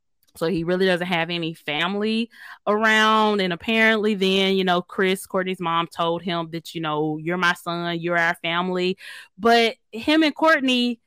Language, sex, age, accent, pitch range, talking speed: English, female, 20-39, American, 175-230 Hz, 170 wpm